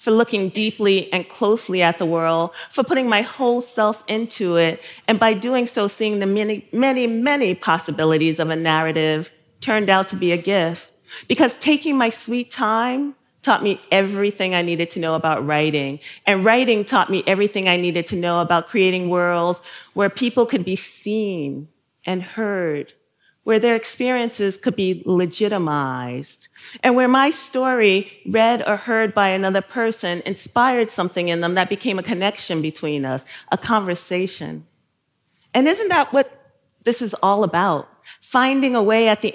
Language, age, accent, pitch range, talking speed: English, 40-59, American, 175-235 Hz, 165 wpm